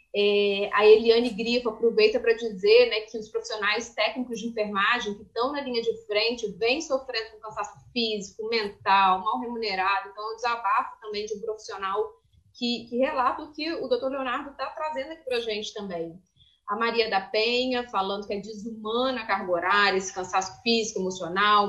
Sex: female